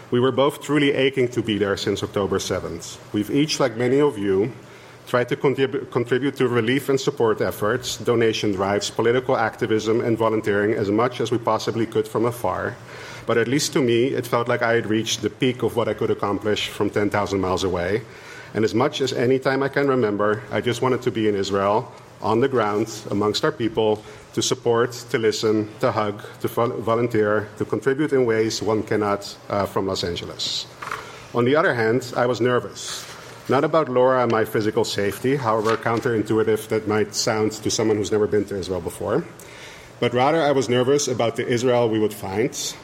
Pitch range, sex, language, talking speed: 105-130 Hz, male, English, 195 wpm